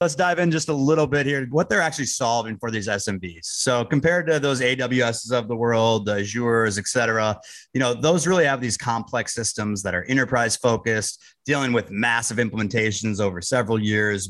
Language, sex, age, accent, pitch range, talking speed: English, male, 30-49, American, 100-125 Hz, 195 wpm